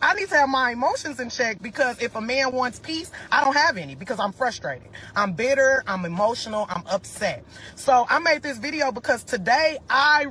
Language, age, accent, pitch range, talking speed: English, 30-49, American, 195-275 Hz, 205 wpm